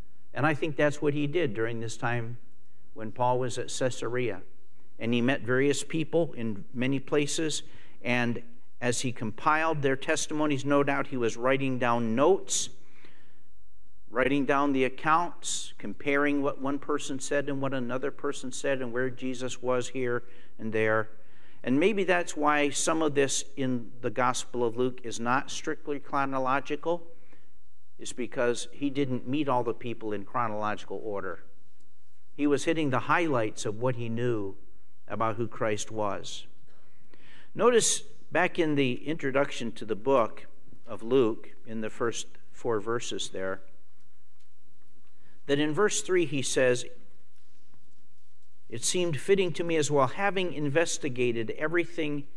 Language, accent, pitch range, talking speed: English, American, 110-145 Hz, 150 wpm